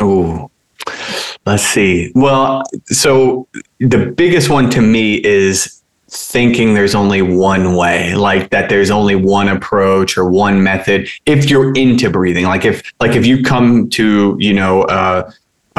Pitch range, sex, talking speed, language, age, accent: 95-115 Hz, male, 150 wpm, English, 30-49, American